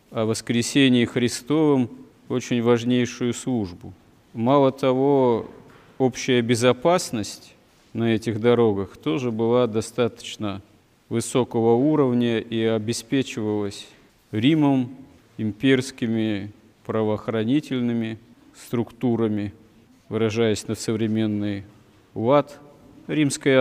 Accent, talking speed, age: native, 75 wpm, 40-59